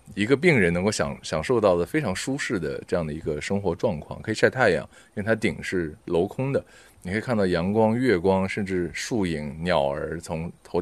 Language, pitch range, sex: Chinese, 85-105 Hz, male